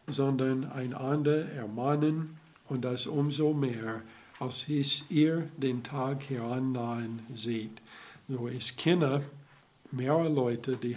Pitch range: 115-140 Hz